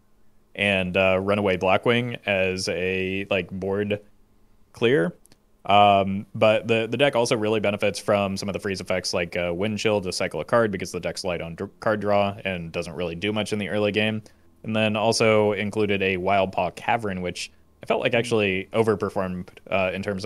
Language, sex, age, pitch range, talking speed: English, male, 20-39, 90-105 Hz, 185 wpm